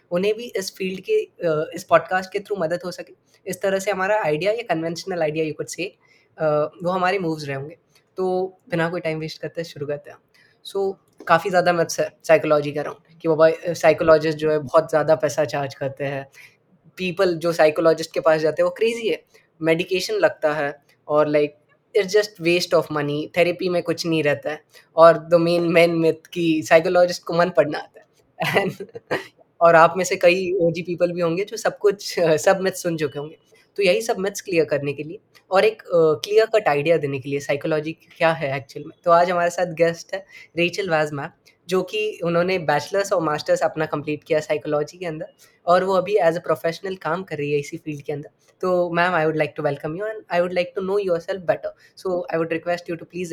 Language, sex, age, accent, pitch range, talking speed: Hindi, female, 20-39, native, 155-185 Hz, 215 wpm